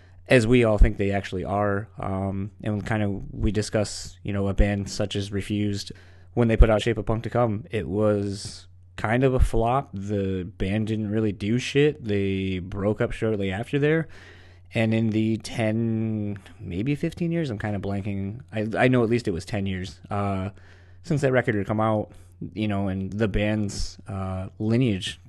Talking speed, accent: 190 wpm, American